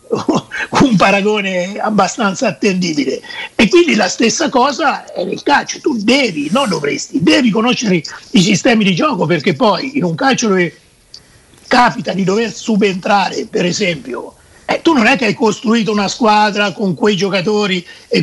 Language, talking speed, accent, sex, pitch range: Italian, 155 wpm, native, male, 195-235 Hz